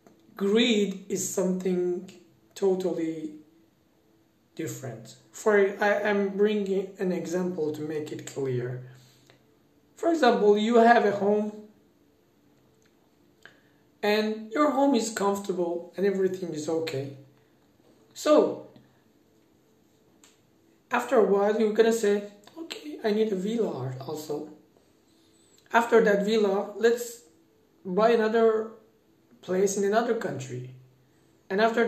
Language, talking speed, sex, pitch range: Turkish, 105 wpm, male, 175-220 Hz